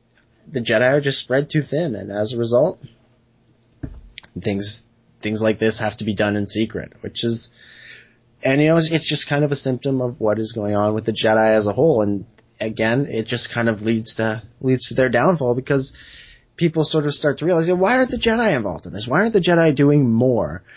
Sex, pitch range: male, 110-140 Hz